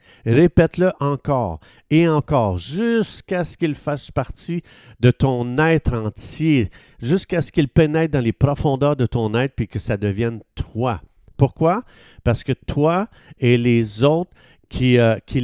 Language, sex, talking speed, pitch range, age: French, male, 140 wpm, 110-150 Hz, 50-69